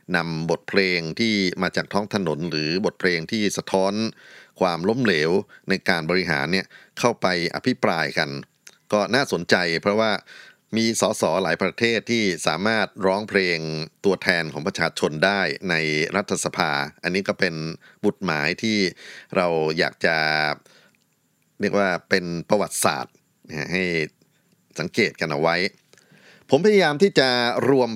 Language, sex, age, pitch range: Thai, male, 30-49, 85-105 Hz